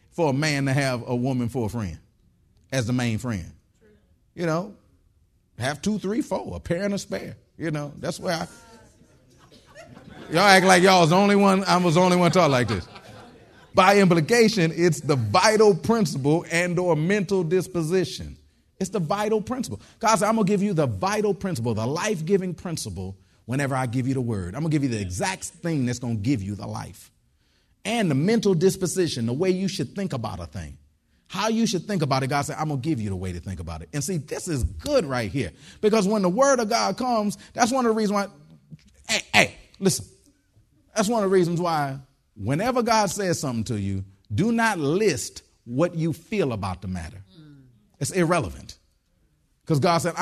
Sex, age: male, 30-49